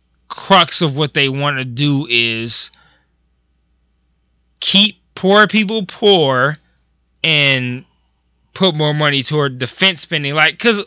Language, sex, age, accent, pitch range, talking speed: English, male, 20-39, American, 130-195 Hz, 115 wpm